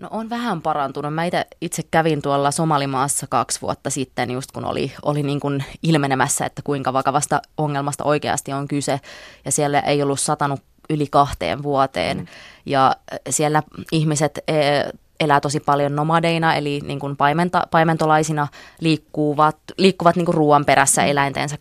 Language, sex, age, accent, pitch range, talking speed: Finnish, female, 20-39, native, 140-155 Hz, 145 wpm